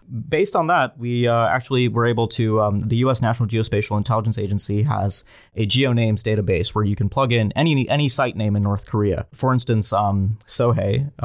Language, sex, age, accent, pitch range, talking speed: English, male, 20-39, American, 105-120 Hz, 205 wpm